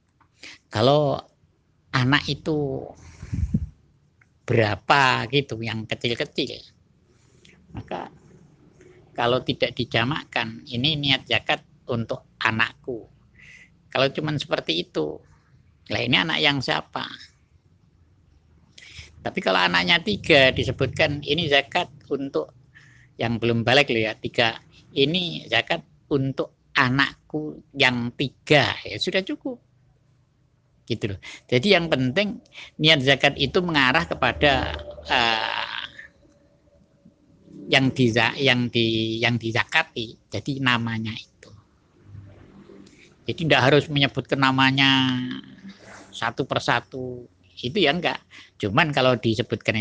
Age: 50-69